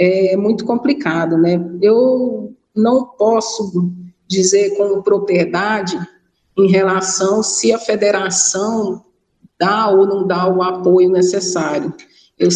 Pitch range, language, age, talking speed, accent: 185-255 Hz, Portuguese, 50-69, 110 wpm, Brazilian